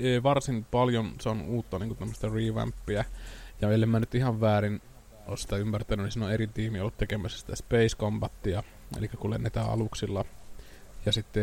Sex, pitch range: male, 105-120 Hz